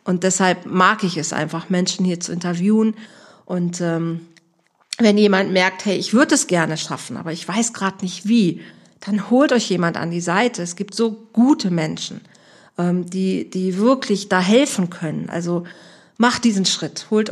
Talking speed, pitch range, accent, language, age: 175 wpm, 175-210 Hz, German, German, 40-59